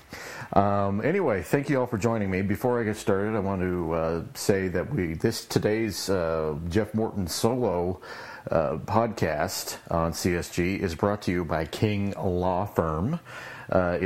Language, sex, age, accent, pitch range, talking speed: English, male, 40-59, American, 90-115 Hz, 160 wpm